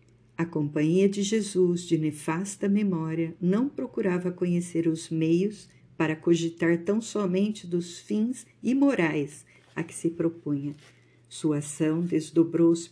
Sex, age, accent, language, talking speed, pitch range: female, 50-69, Brazilian, Portuguese, 120 wpm, 155-180 Hz